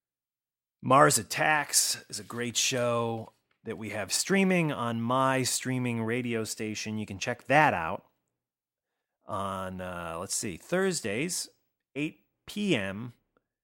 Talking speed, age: 120 wpm, 30-49